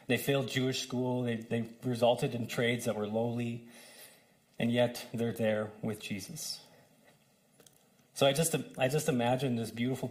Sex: male